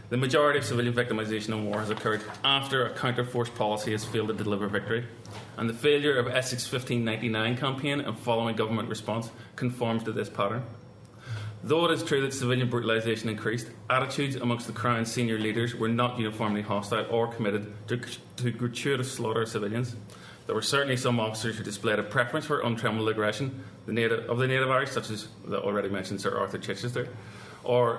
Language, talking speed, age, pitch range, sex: English, 180 wpm, 30-49, 110-130 Hz, male